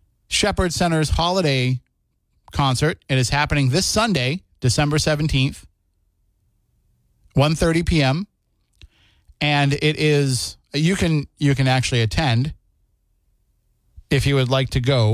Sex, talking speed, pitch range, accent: male, 110 wpm, 120-150 Hz, American